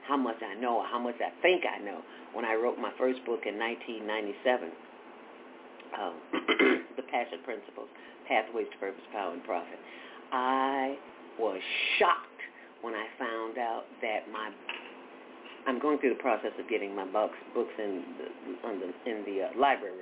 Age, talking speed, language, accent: 50-69, 165 wpm, English, American